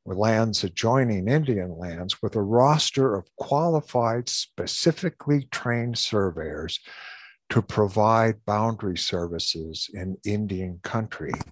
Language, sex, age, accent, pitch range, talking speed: English, male, 60-79, American, 90-115 Hz, 100 wpm